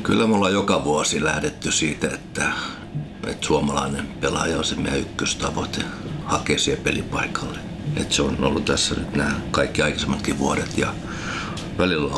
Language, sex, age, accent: Finnish, male, 60-79, native